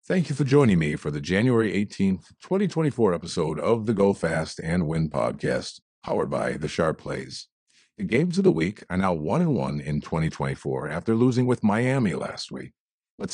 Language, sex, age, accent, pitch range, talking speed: English, male, 50-69, American, 85-130 Hz, 190 wpm